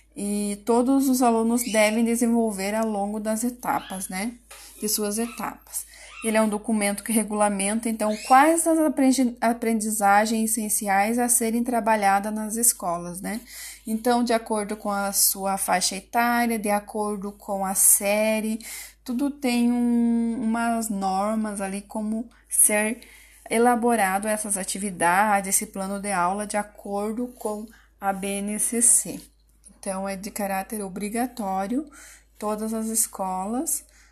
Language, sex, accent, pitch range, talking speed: Portuguese, female, Brazilian, 195-235 Hz, 125 wpm